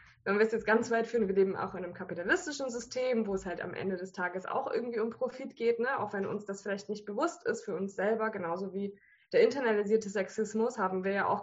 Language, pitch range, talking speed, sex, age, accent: German, 195-245 Hz, 240 wpm, female, 20-39, German